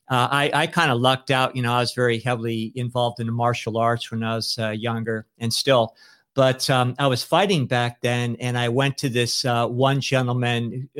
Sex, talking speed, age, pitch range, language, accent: male, 215 wpm, 50-69, 115-130 Hz, English, American